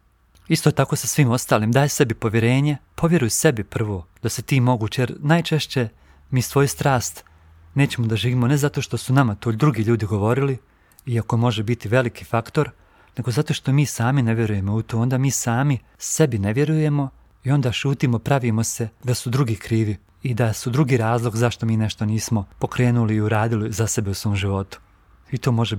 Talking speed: 190 wpm